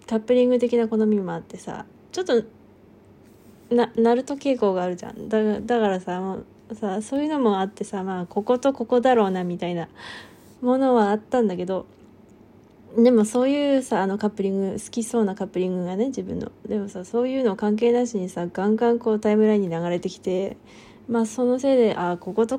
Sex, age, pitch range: female, 20-39, 190-235 Hz